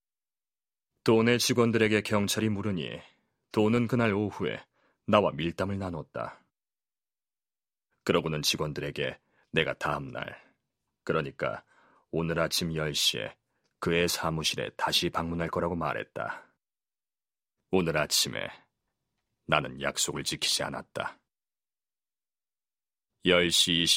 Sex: male